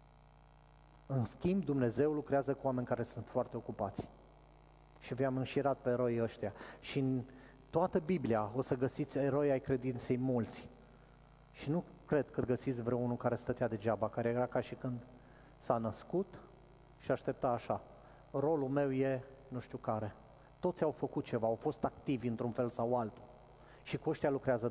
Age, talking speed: 30-49, 175 wpm